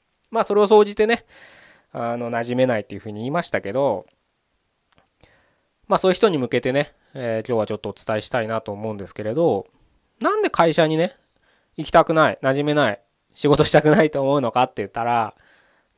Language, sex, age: Japanese, male, 20-39